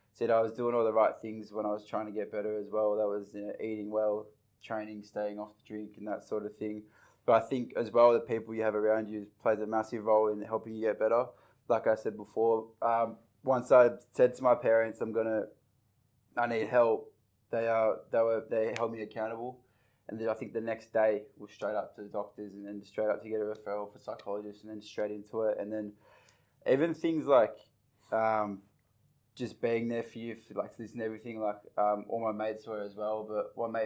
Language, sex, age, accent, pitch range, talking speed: English, male, 20-39, Australian, 105-115 Hz, 235 wpm